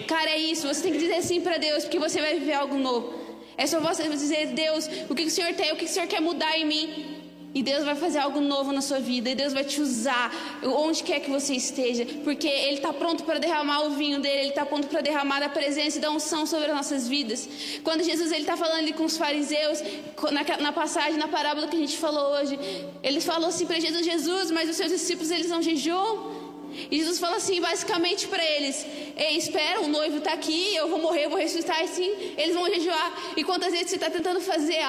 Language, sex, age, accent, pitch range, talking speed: Portuguese, female, 20-39, Brazilian, 295-335 Hz, 240 wpm